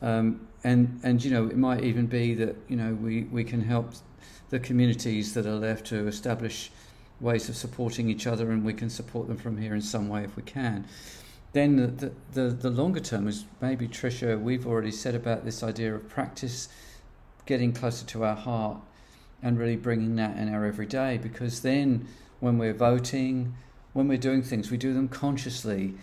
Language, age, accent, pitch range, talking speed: English, 50-69, British, 110-125 Hz, 195 wpm